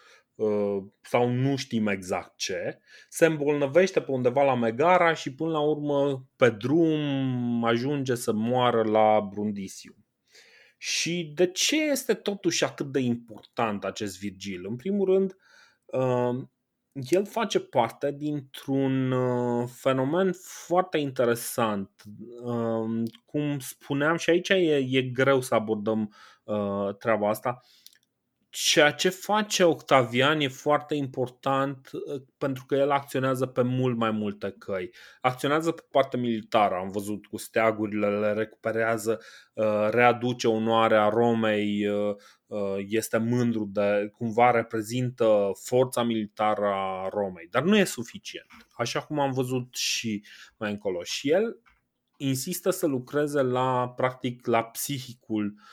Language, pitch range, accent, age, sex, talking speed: Romanian, 110-145 Hz, native, 30-49, male, 120 wpm